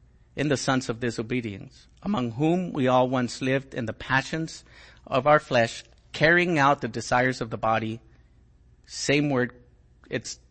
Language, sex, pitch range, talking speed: English, male, 105-135 Hz, 155 wpm